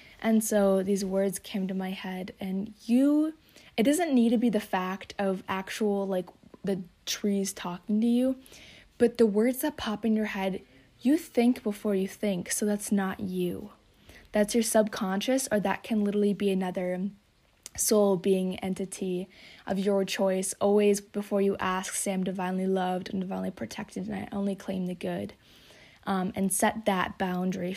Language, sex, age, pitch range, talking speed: English, female, 20-39, 190-215 Hz, 170 wpm